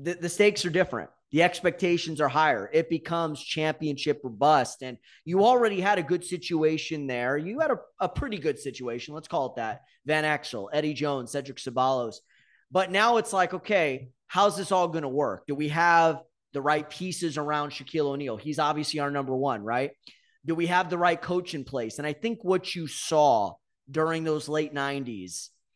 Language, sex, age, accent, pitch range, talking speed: English, male, 30-49, American, 145-185 Hz, 190 wpm